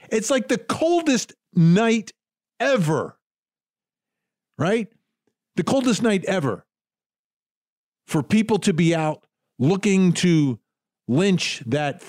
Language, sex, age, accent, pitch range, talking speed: English, male, 50-69, American, 145-210 Hz, 100 wpm